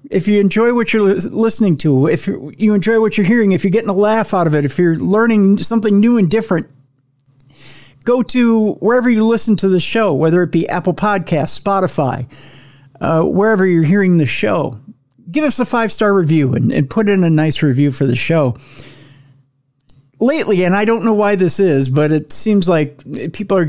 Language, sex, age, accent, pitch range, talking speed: English, male, 50-69, American, 135-200 Hz, 195 wpm